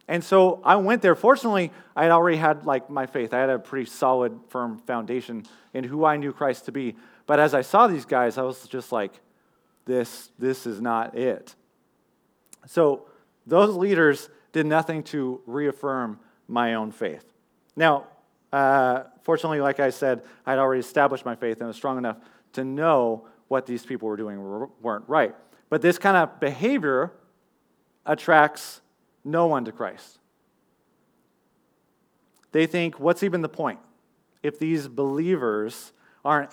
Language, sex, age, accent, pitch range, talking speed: English, male, 30-49, American, 125-160 Hz, 160 wpm